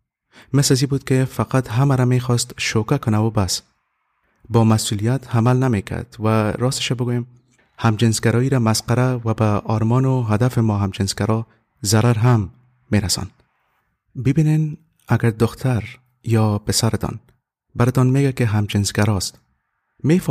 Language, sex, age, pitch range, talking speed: English, male, 30-49, 105-125 Hz, 125 wpm